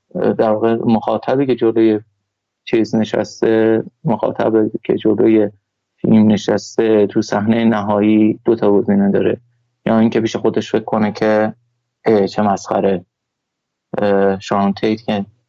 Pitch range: 105-115 Hz